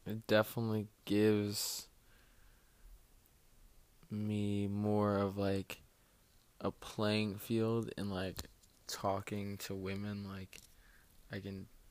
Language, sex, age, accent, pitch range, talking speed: English, male, 20-39, American, 100-115 Hz, 90 wpm